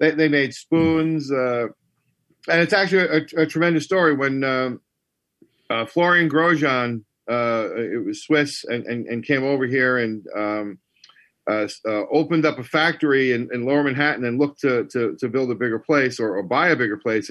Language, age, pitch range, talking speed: English, 50-69, 110-145 Hz, 185 wpm